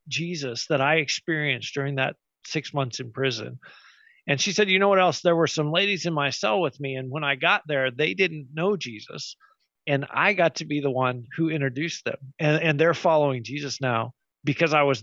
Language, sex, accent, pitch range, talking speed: English, male, American, 140-180 Hz, 215 wpm